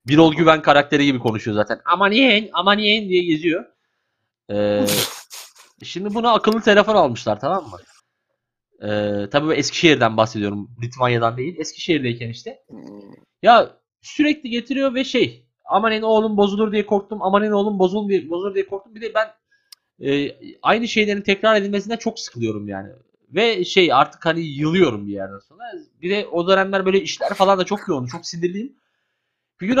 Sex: male